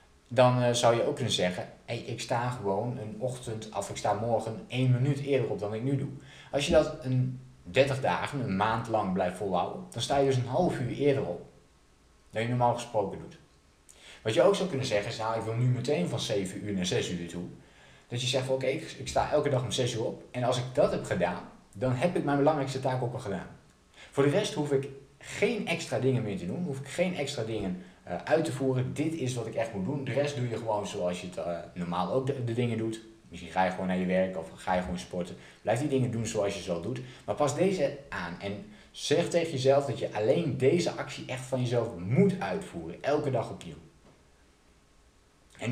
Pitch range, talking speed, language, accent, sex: 95-140 Hz, 235 wpm, Dutch, Dutch, male